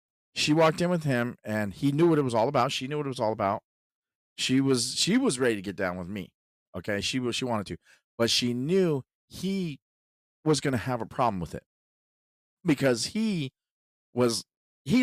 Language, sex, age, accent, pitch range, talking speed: English, male, 40-59, American, 105-150 Hz, 205 wpm